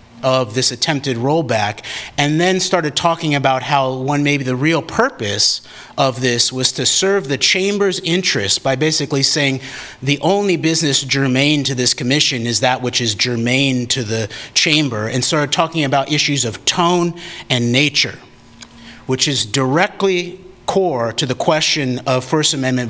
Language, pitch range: English, 125-155 Hz